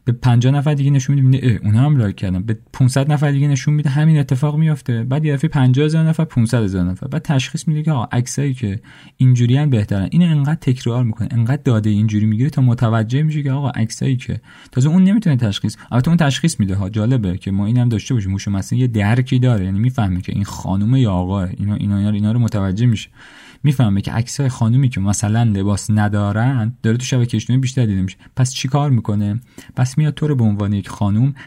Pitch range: 105-135 Hz